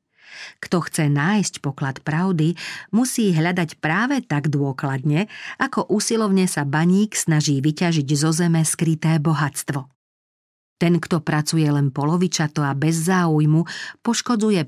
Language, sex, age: Slovak, female, 40-59